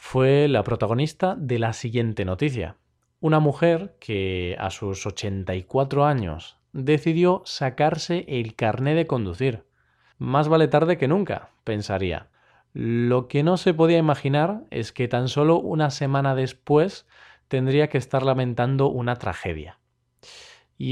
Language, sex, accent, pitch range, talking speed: Spanish, male, Spanish, 115-150 Hz, 130 wpm